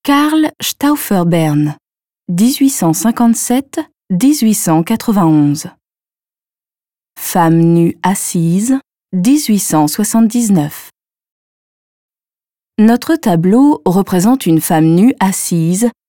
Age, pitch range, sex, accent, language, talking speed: 20-39, 175-240 Hz, female, French, French, 55 wpm